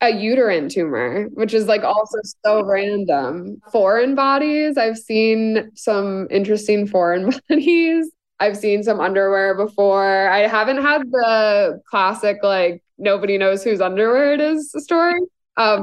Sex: female